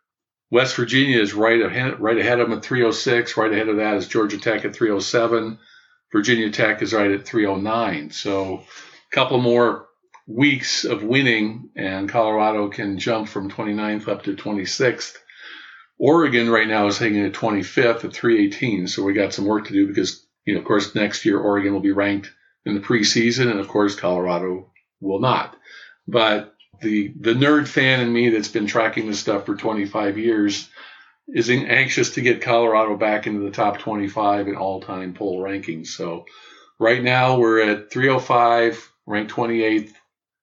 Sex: male